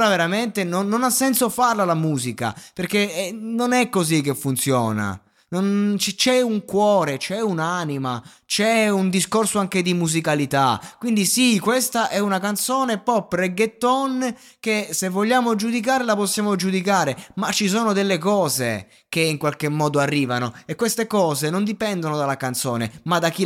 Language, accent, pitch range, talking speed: Italian, native, 125-200 Hz, 160 wpm